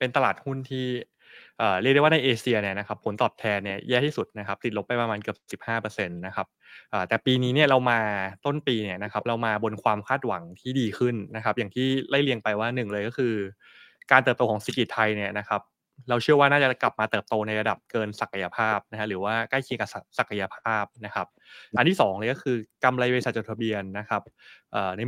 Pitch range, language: 105-125 Hz, Thai